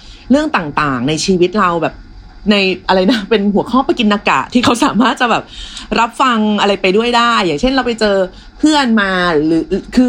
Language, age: Thai, 30-49